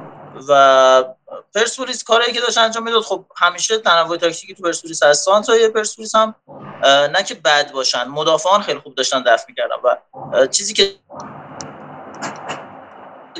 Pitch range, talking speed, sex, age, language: 150-210 Hz, 135 wpm, male, 30-49, Persian